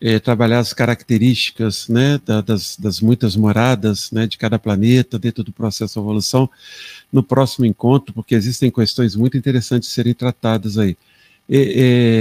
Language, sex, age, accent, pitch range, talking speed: Portuguese, male, 50-69, Brazilian, 110-130 Hz, 150 wpm